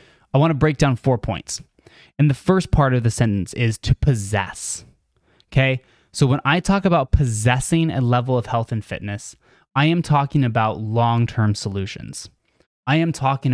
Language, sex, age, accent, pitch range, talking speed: English, male, 20-39, American, 110-140 Hz, 175 wpm